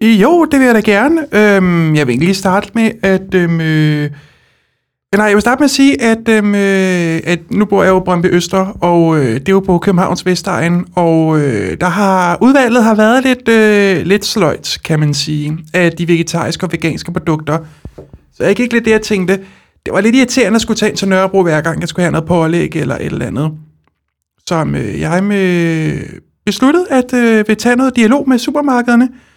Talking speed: 210 wpm